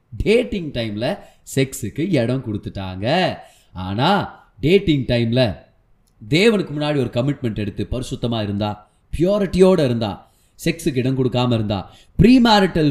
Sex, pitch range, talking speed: male, 110-155 Hz, 80 wpm